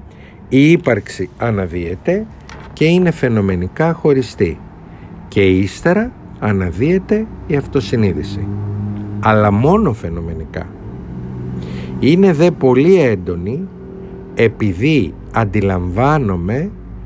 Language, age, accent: Greek, 50-69, native